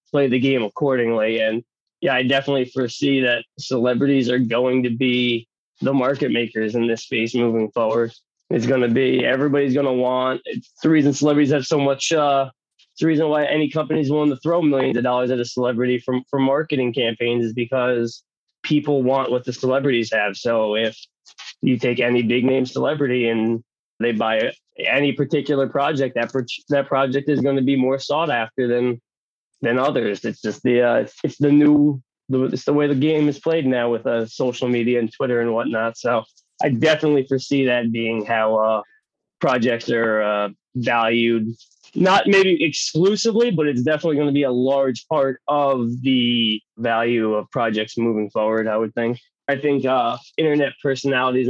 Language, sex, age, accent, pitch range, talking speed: English, male, 20-39, American, 120-145 Hz, 185 wpm